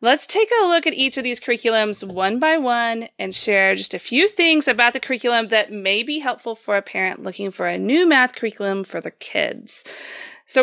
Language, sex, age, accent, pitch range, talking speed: English, female, 30-49, American, 195-245 Hz, 215 wpm